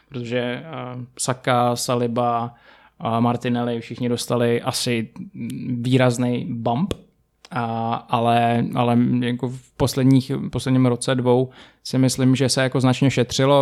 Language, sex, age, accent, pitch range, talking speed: Czech, male, 20-39, native, 120-140 Hz, 110 wpm